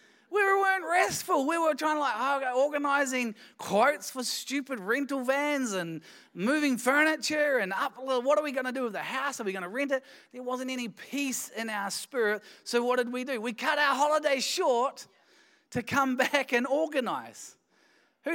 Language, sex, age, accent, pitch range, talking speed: English, male, 20-39, Australian, 175-260 Hz, 195 wpm